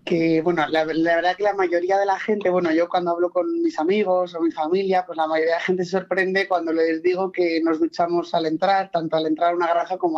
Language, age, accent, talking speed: Spanish, 20-39, Spanish, 260 wpm